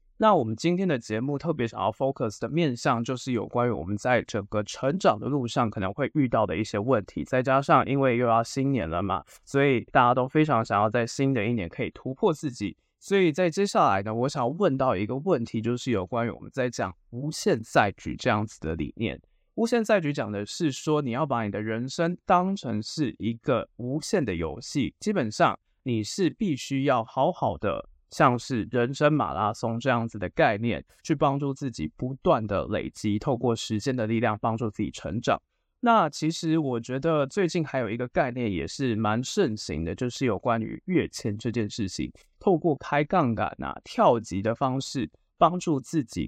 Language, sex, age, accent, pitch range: Chinese, male, 20-39, native, 110-145 Hz